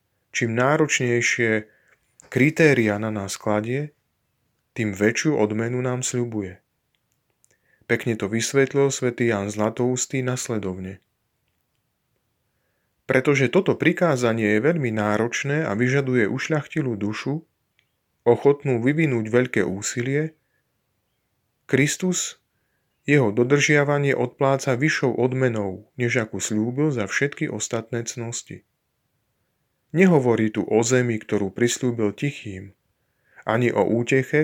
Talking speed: 95 wpm